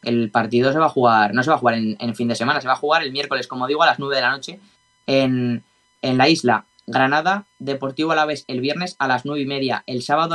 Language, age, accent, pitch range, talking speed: Spanish, 20-39, Spanish, 125-150 Hz, 265 wpm